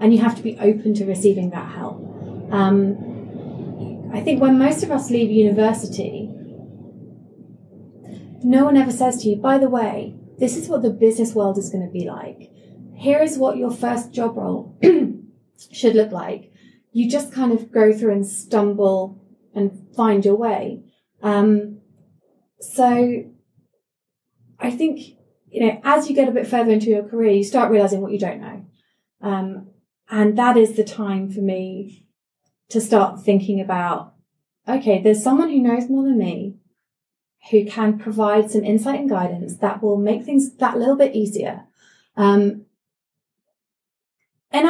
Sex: female